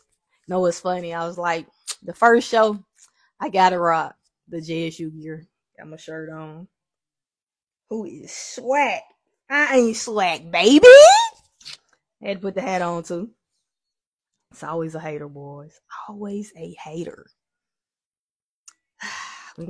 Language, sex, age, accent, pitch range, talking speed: English, female, 20-39, American, 160-215 Hz, 130 wpm